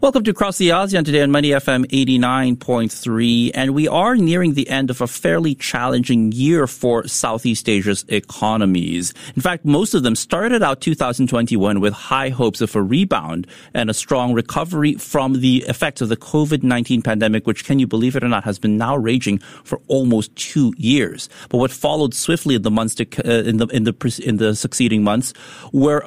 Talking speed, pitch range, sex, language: 190 wpm, 110-140 Hz, male, English